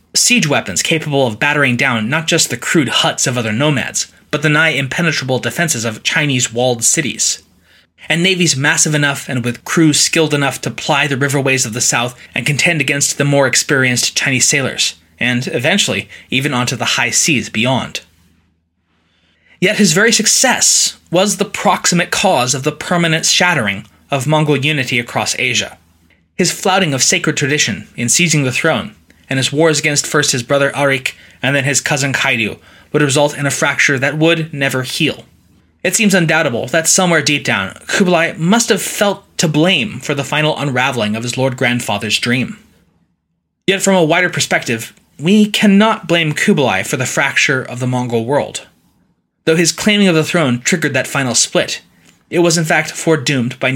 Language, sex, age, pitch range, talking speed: English, male, 20-39, 125-165 Hz, 175 wpm